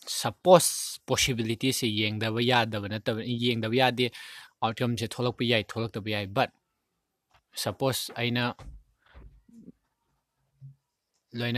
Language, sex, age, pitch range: English, male, 20-39, 105-125 Hz